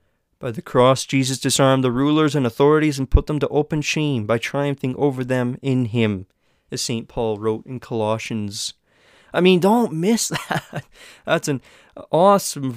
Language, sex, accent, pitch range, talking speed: English, male, American, 120-150 Hz, 165 wpm